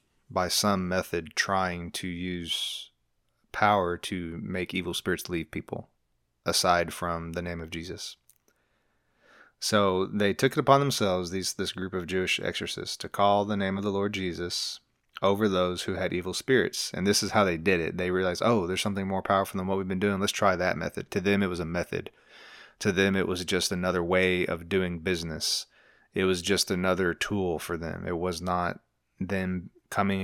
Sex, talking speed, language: male, 190 wpm, English